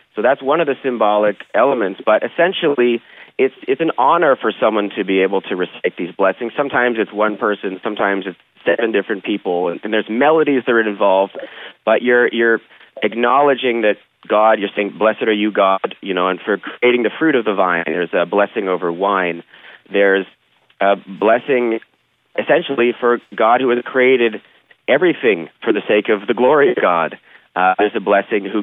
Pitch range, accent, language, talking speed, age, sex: 100-125 Hz, American, English, 180 wpm, 30-49, male